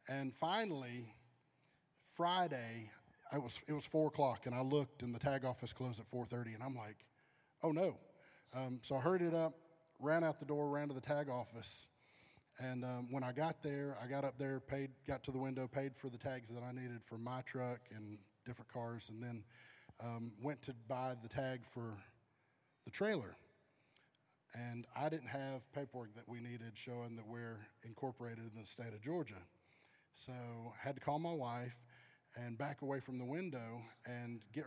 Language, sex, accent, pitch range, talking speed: English, male, American, 115-140 Hz, 190 wpm